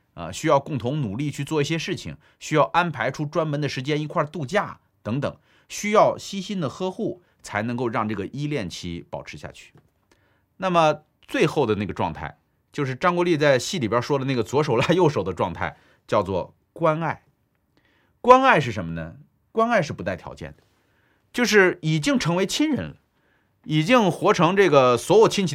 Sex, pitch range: male, 120-175 Hz